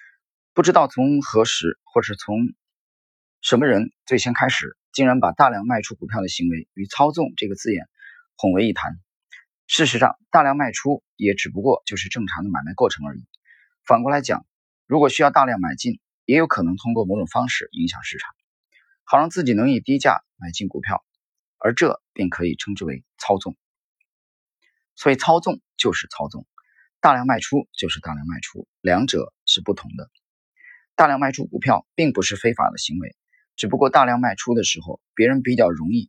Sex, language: male, Chinese